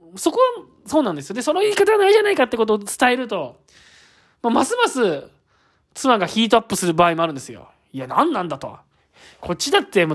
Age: 20-39